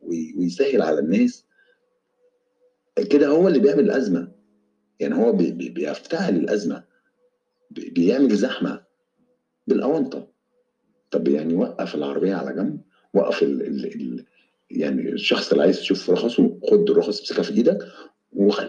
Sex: male